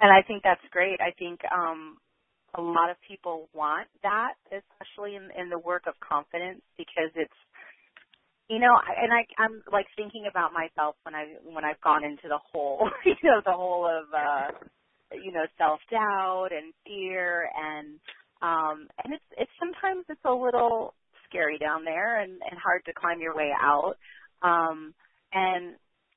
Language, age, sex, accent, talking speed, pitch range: English, 30-49, female, American, 170 wpm, 165-215 Hz